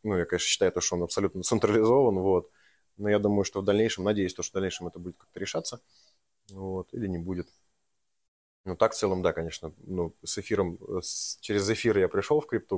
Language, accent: Russian, native